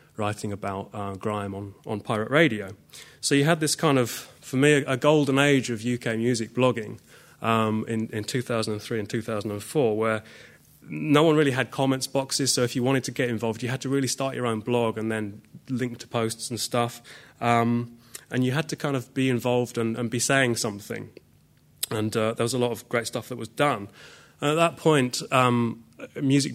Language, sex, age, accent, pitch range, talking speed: English, male, 20-39, British, 110-130 Hz, 200 wpm